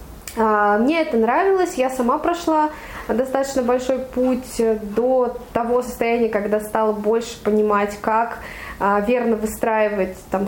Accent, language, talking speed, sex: native, Russian, 110 wpm, female